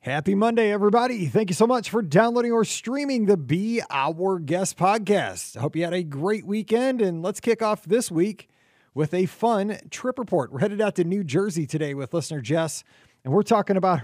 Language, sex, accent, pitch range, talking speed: English, male, American, 150-200 Hz, 205 wpm